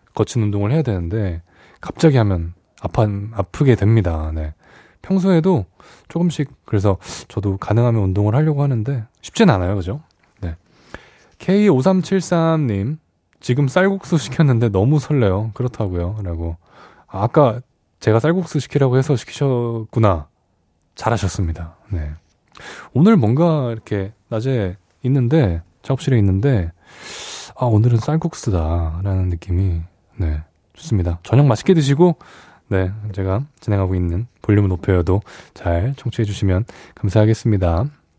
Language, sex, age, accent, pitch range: Korean, male, 20-39, native, 95-140 Hz